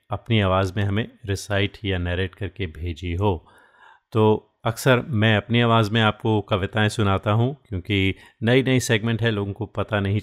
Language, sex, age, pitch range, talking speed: Hindi, male, 30-49, 95-115 Hz, 170 wpm